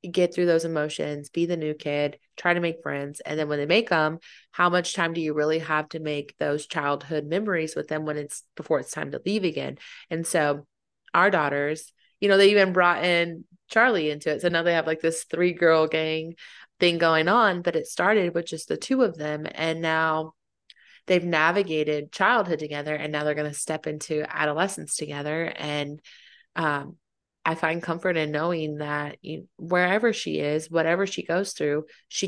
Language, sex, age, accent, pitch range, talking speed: English, female, 20-39, American, 150-175 Hz, 195 wpm